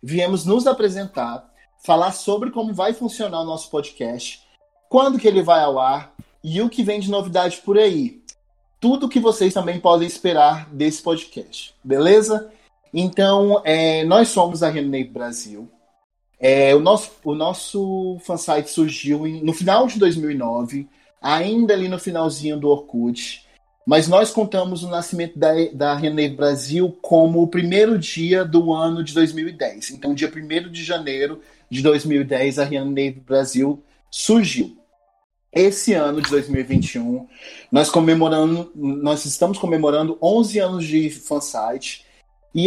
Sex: male